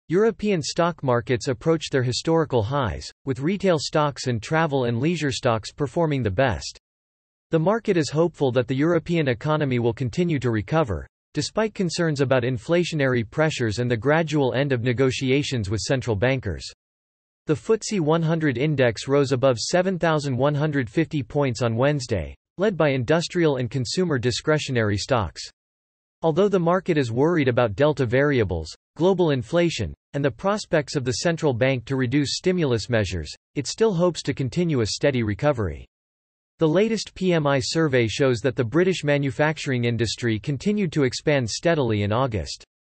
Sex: male